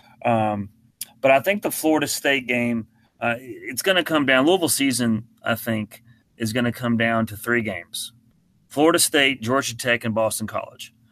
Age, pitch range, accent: 30-49, 115-140 Hz, American